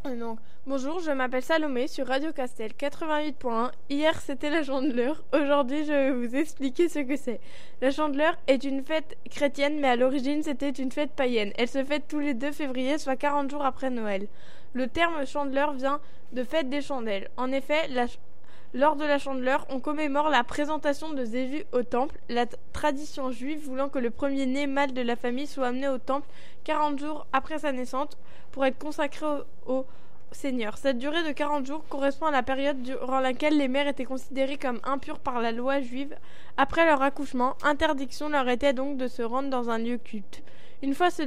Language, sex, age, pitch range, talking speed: French, female, 10-29, 255-295 Hz, 200 wpm